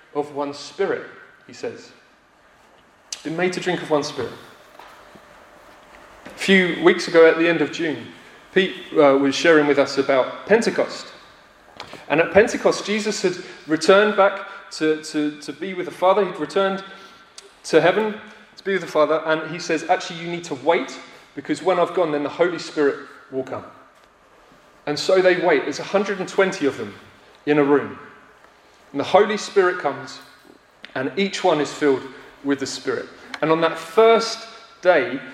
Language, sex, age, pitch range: English, male, 30-49, 150-195 Hz